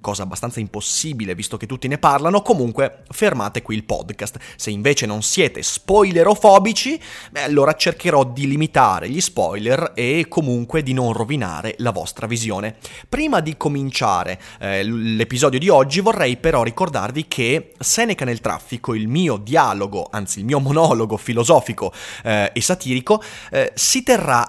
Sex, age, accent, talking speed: male, 30-49, native, 150 wpm